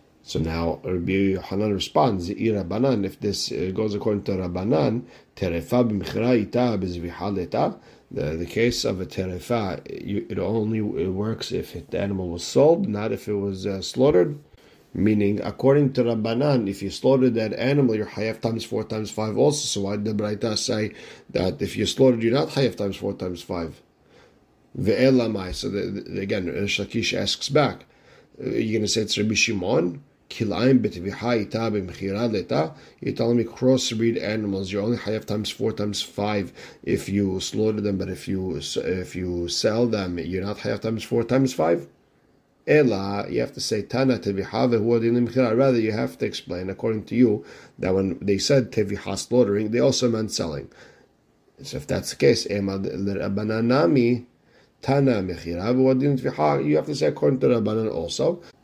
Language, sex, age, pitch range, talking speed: English, male, 50-69, 95-115 Hz, 145 wpm